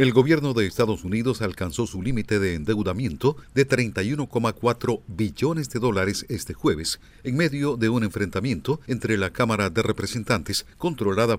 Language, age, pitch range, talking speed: Spanish, 50-69, 100-125 Hz, 150 wpm